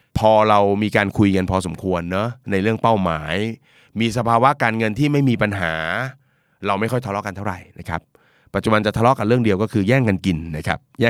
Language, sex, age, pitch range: Thai, male, 30-49, 100-130 Hz